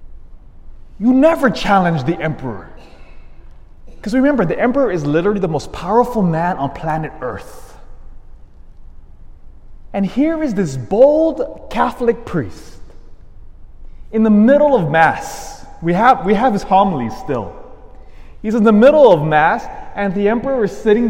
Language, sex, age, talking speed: English, male, 20-39, 135 wpm